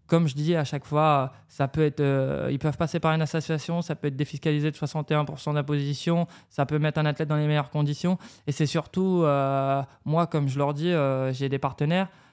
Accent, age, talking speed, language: French, 20-39, 225 wpm, French